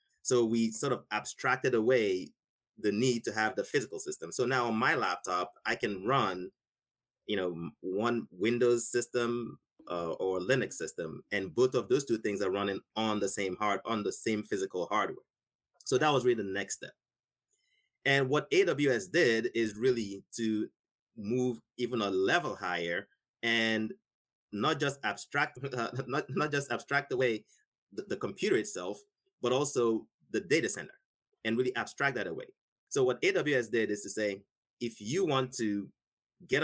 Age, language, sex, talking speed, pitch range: 30-49, English, male, 165 wpm, 105-145 Hz